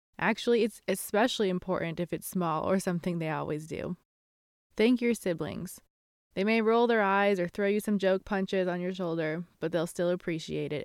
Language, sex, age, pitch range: English, female, 20-39, 170-210 Hz